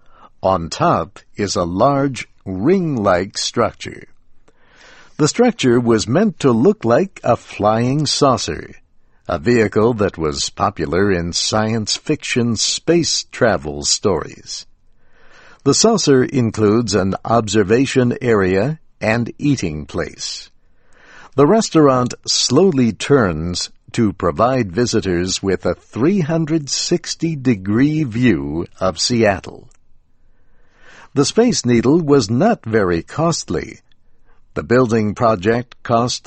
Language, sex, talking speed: English, male, 100 wpm